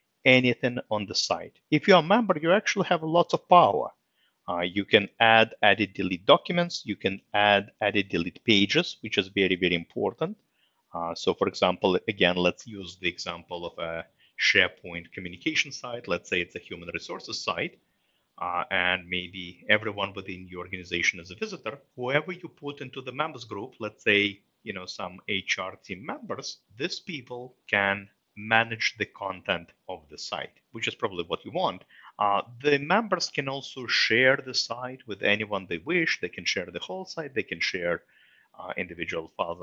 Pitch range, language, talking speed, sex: 100-150 Hz, English, 175 wpm, male